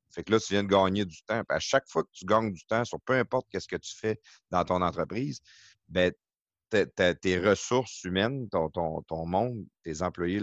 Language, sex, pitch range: French, male, 90-110 Hz